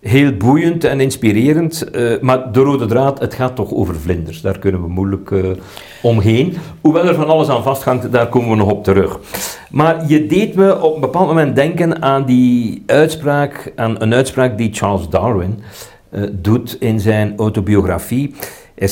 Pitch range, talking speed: 95-125 Hz, 180 wpm